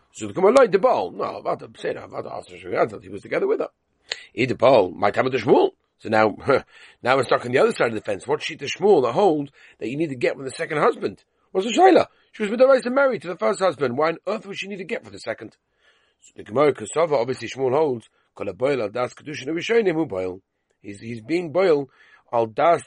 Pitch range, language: 105-160 Hz, English